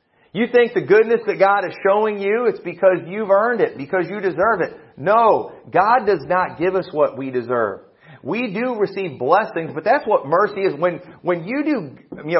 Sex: male